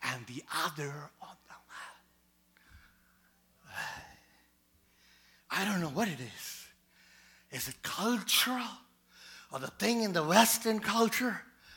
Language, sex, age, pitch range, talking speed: English, male, 50-69, 140-200 Hz, 105 wpm